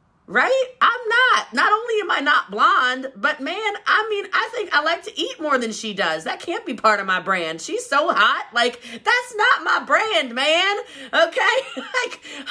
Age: 30-49